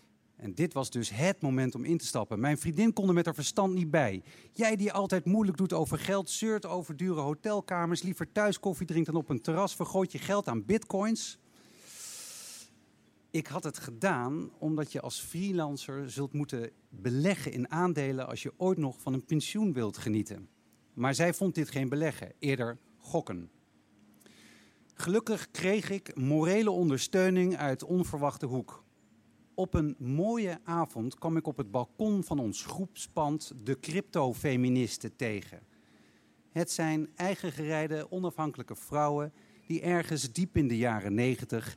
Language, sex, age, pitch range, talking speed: Dutch, male, 50-69, 130-180 Hz, 155 wpm